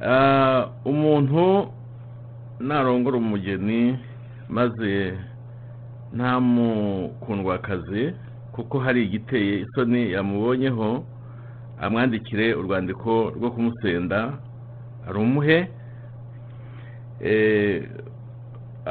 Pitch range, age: 110-125 Hz, 50-69